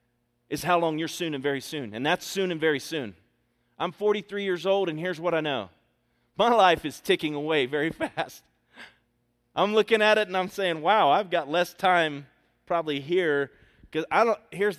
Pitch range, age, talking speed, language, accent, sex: 140-215 Hz, 30-49, 185 wpm, English, American, male